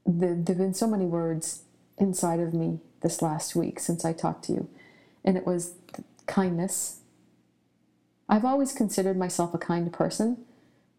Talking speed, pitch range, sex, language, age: 155 wpm, 160-185 Hz, female, English, 50-69